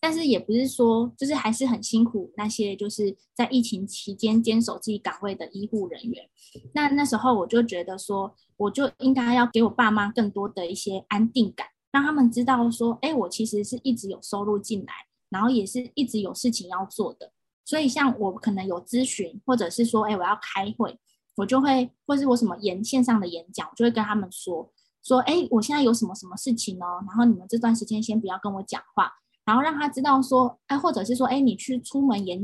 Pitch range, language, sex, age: 205-255 Hz, Chinese, female, 10-29